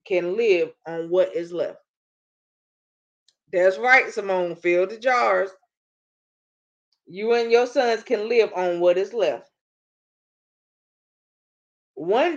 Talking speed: 110 wpm